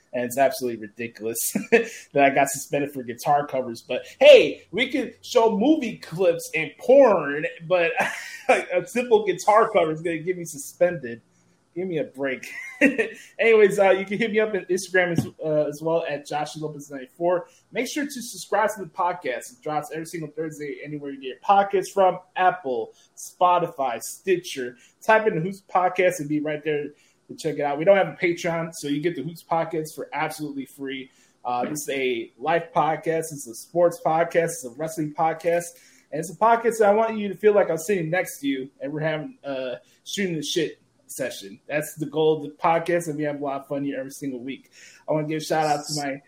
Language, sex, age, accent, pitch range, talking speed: English, male, 20-39, American, 145-185 Hz, 205 wpm